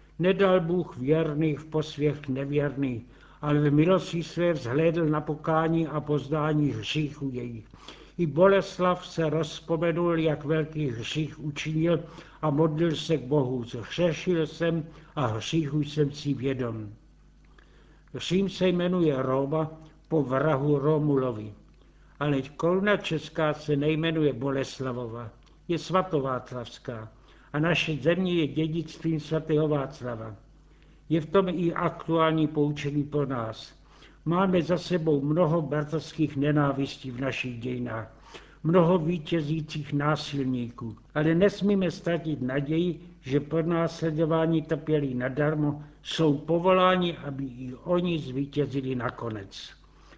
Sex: male